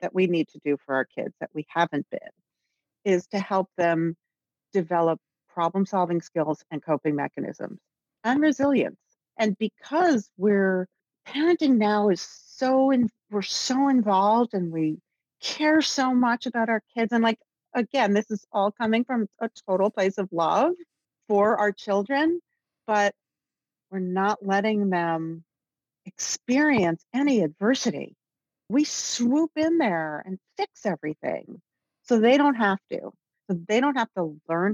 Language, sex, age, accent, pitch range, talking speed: English, female, 40-59, American, 185-240 Hz, 145 wpm